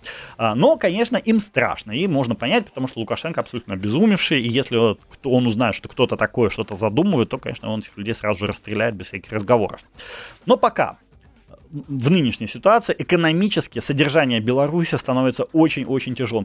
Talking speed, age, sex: 155 wpm, 30-49, male